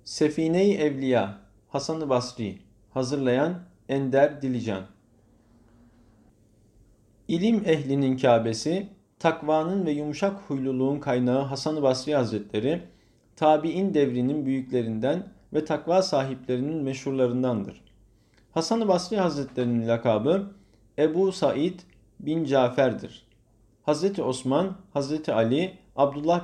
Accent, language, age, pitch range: native, Turkish, 50-69, 120-165 Hz